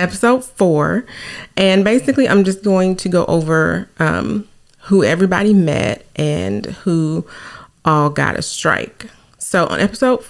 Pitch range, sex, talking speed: 150-190 Hz, female, 135 wpm